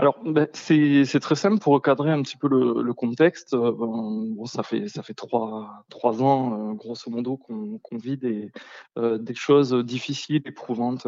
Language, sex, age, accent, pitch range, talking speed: French, male, 20-39, French, 125-155 Hz, 175 wpm